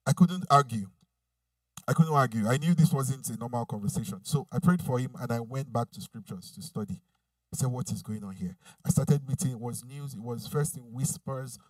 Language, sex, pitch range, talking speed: English, male, 115-160 Hz, 225 wpm